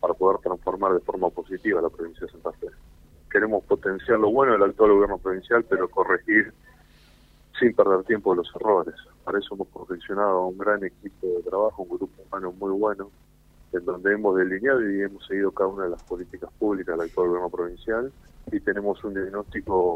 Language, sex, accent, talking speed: Spanish, male, Argentinian, 185 wpm